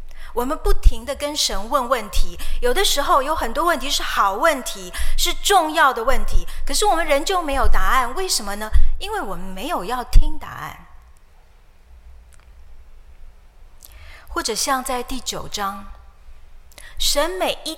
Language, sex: Chinese, female